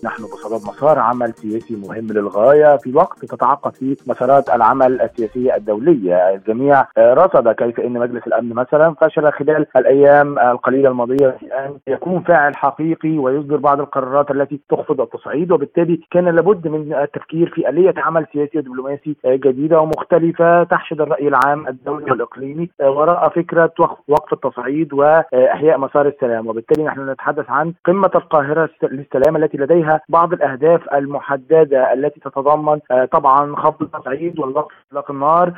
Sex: male